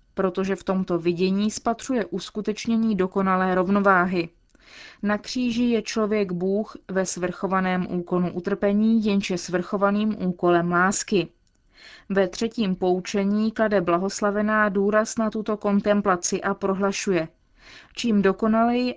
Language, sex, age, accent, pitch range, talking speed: Czech, female, 20-39, native, 185-215 Hz, 110 wpm